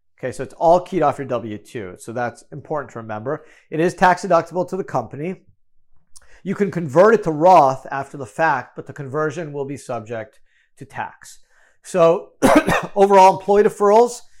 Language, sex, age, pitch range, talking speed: English, male, 40-59, 125-175 Hz, 170 wpm